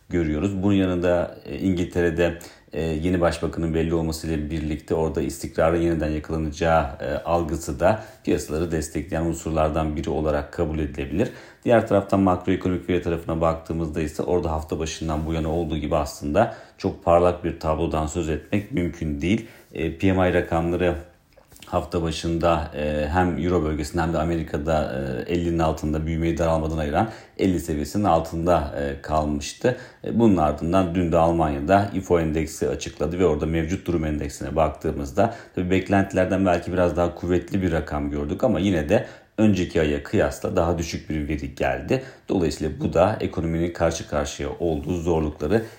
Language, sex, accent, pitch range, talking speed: Turkish, male, native, 80-95 Hz, 140 wpm